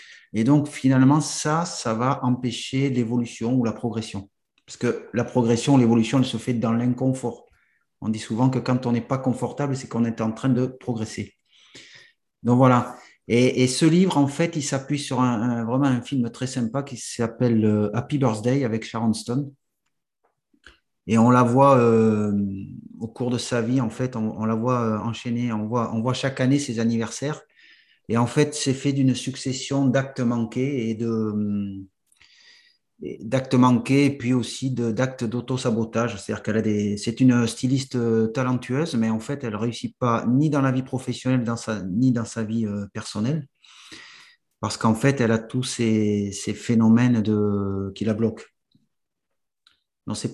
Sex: male